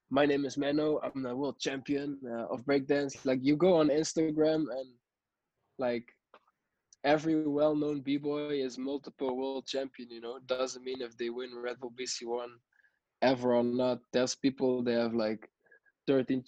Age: 20-39